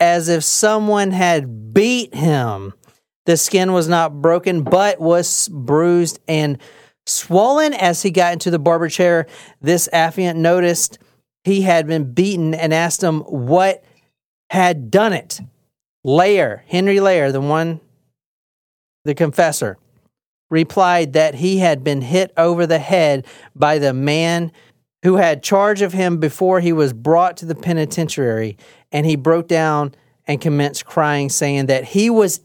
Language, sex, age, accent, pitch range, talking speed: English, male, 40-59, American, 155-190 Hz, 145 wpm